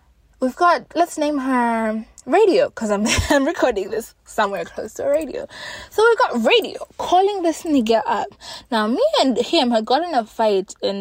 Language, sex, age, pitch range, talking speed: English, female, 20-39, 200-275 Hz, 180 wpm